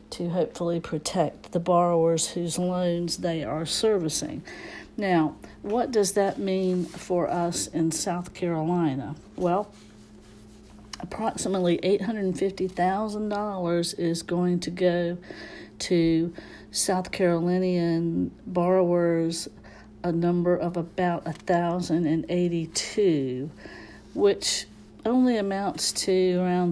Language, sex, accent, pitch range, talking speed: English, female, American, 165-185 Hz, 110 wpm